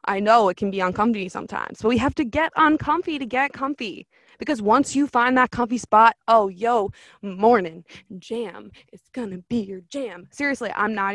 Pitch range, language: 185-240 Hz, English